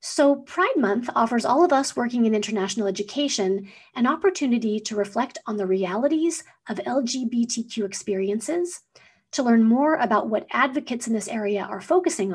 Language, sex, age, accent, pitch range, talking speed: English, female, 40-59, American, 215-295 Hz, 155 wpm